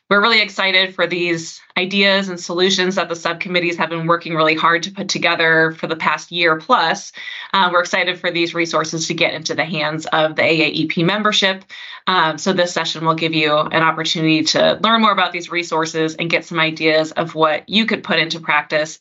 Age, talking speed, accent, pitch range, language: 20-39, 205 wpm, American, 165-210 Hz, English